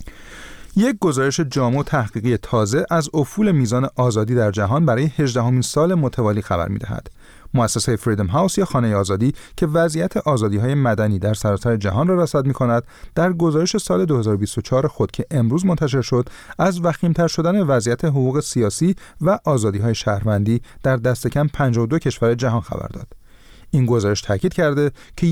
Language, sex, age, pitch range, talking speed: Persian, male, 30-49, 110-155 Hz, 150 wpm